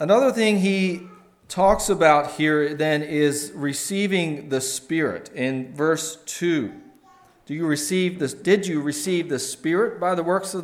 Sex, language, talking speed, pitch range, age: male, English, 150 wpm, 135-170 Hz, 40-59